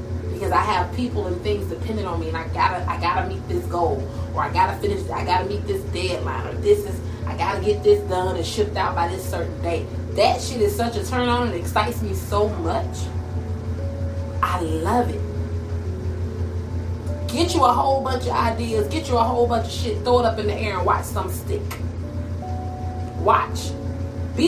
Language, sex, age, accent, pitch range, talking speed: English, female, 30-49, American, 85-95 Hz, 205 wpm